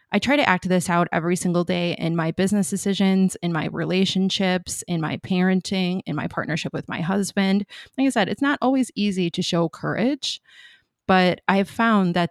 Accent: American